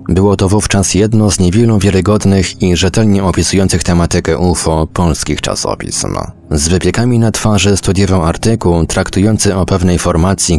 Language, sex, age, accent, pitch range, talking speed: Polish, male, 30-49, native, 85-100 Hz, 135 wpm